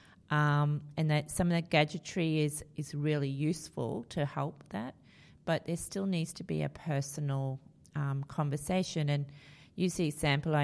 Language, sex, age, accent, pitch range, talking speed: English, female, 30-49, Australian, 140-155 Hz, 160 wpm